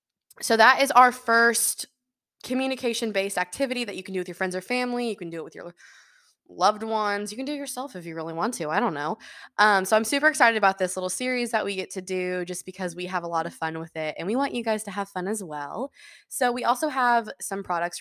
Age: 20-39